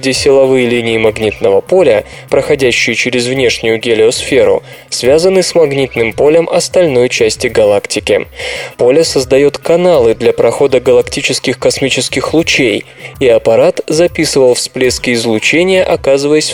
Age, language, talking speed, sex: 20-39, Russian, 105 wpm, male